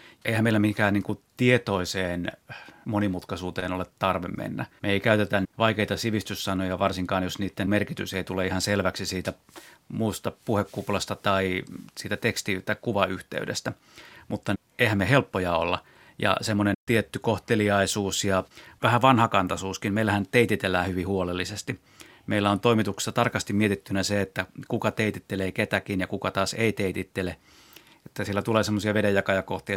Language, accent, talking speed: Finnish, native, 130 wpm